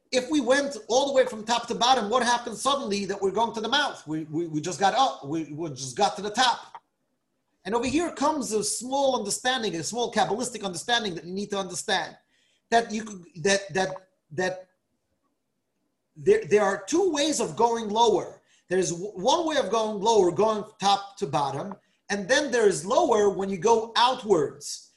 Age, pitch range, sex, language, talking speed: 30-49, 190-260 Hz, male, English, 195 wpm